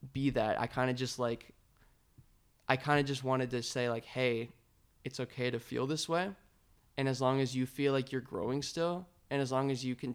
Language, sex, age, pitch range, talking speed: English, male, 20-39, 120-135 Hz, 225 wpm